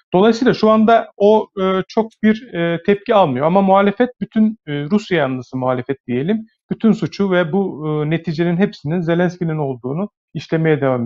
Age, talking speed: 40-59, 135 wpm